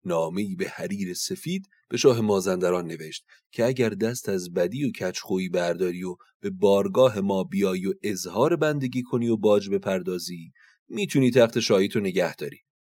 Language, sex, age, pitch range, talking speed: Persian, male, 30-49, 90-135 Hz, 150 wpm